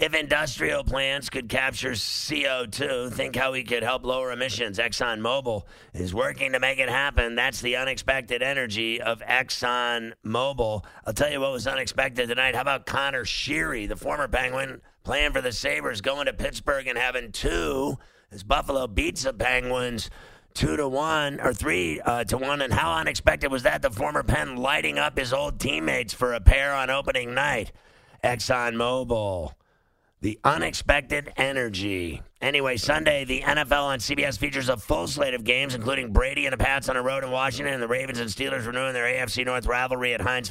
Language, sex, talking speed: English, male, 180 wpm